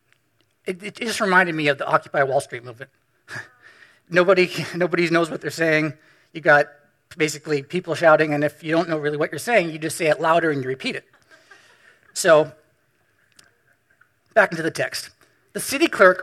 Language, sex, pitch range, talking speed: English, male, 150-210 Hz, 180 wpm